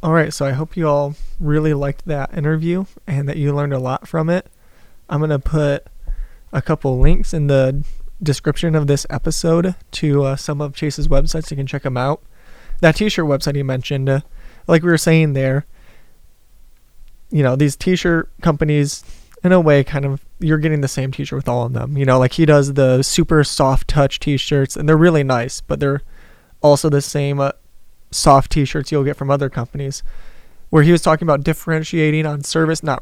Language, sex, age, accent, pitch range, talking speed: English, male, 20-39, American, 130-155 Hz, 200 wpm